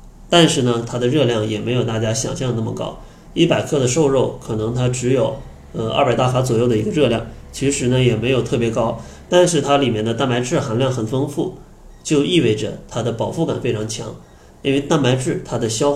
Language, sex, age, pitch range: Chinese, male, 20-39, 115-140 Hz